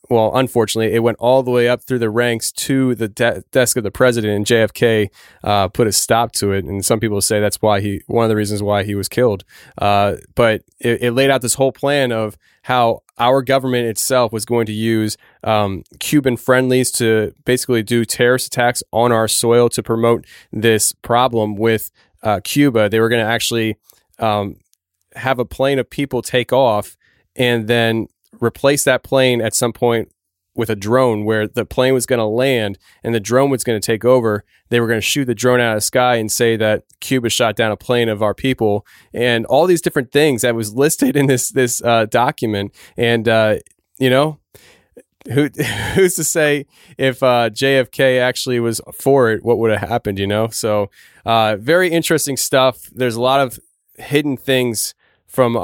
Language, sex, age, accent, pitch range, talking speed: English, male, 20-39, American, 110-130 Hz, 195 wpm